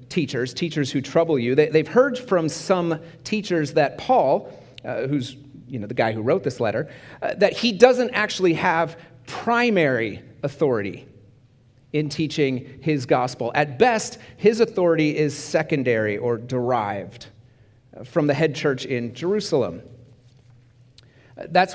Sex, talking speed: male, 135 wpm